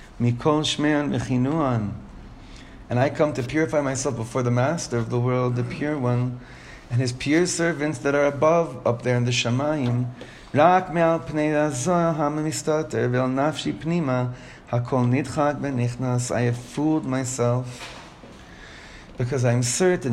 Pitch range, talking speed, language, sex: 125-145 Hz, 100 wpm, English, male